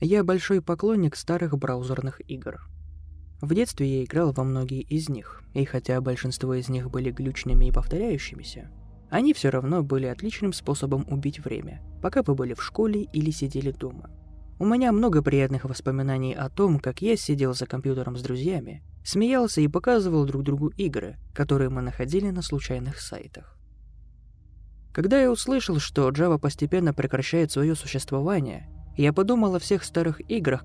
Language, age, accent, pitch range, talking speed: Russian, 20-39, native, 125-170 Hz, 155 wpm